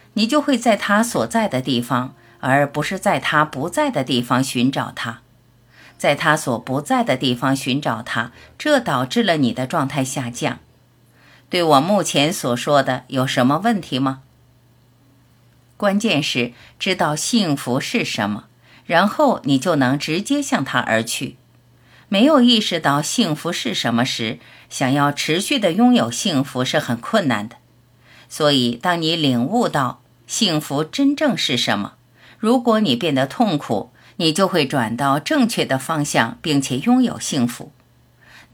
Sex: female